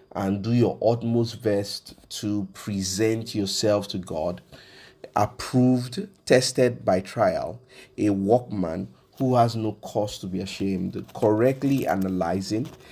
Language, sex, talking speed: English, male, 115 wpm